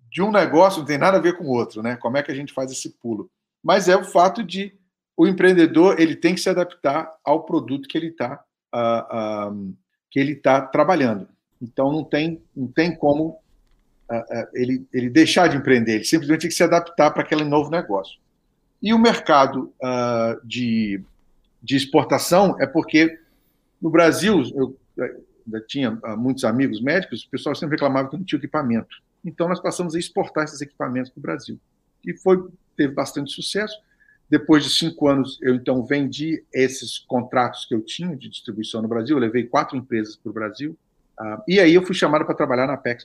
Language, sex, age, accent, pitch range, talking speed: Portuguese, male, 50-69, Brazilian, 120-165 Hz, 190 wpm